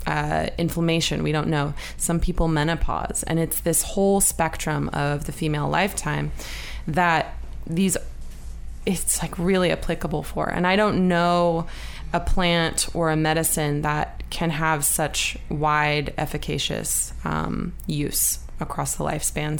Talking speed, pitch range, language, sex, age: 135 wpm, 150-170 Hz, English, female, 20-39